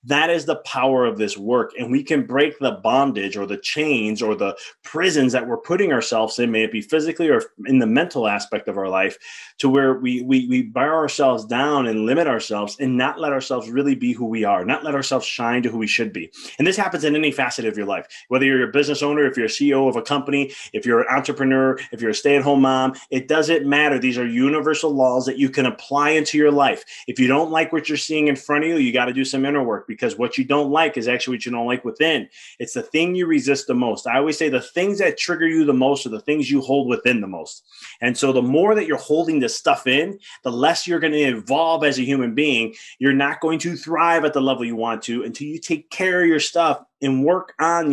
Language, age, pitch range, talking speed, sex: English, 20-39, 125-160 Hz, 260 wpm, male